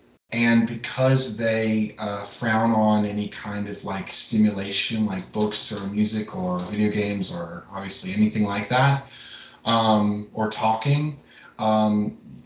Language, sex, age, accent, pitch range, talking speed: English, male, 20-39, American, 105-115 Hz, 130 wpm